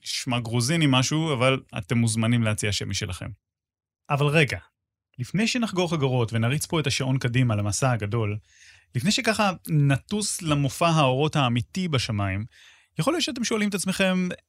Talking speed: 140 wpm